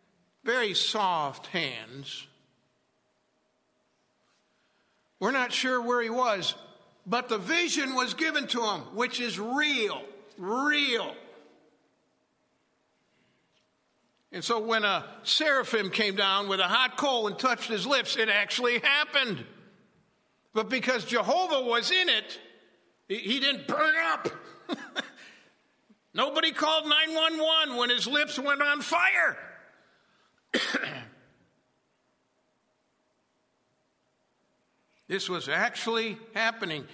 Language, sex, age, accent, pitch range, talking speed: English, male, 60-79, American, 180-275 Hz, 100 wpm